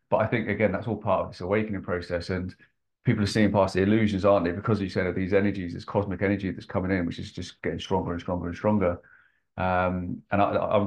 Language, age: English, 30-49